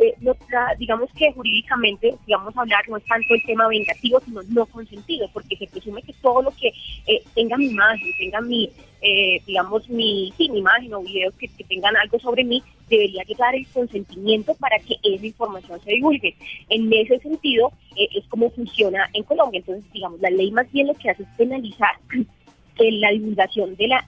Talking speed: 190 wpm